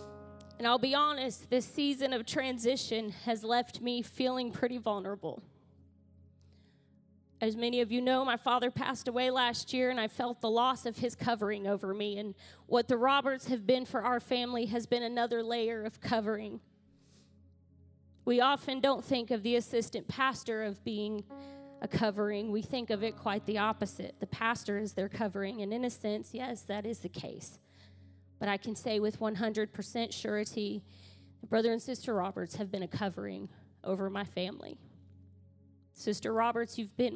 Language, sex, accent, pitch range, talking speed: English, female, American, 185-260 Hz, 170 wpm